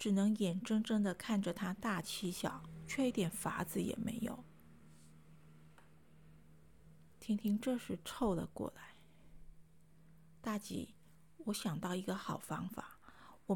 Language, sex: Chinese, female